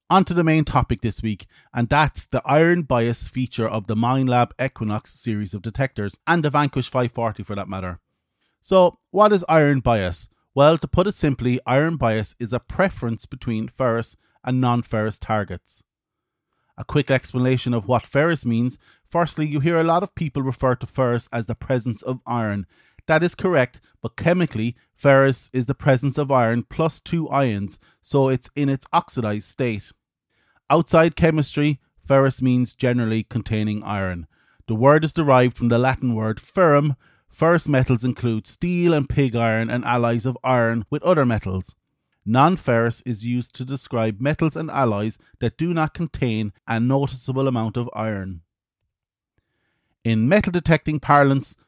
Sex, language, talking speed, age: male, English, 165 wpm, 30-49